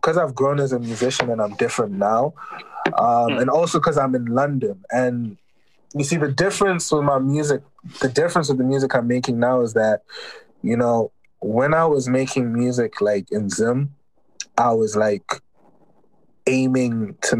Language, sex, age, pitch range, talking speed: English, male, 20-39, 115-135 Hz, 170 wpm